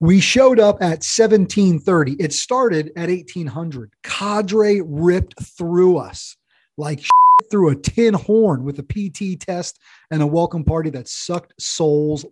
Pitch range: 145-180 Hz